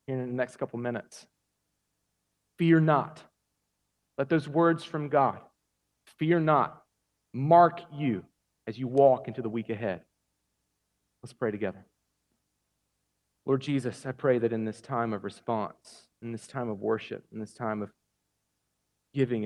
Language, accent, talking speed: English, American, 145 wpm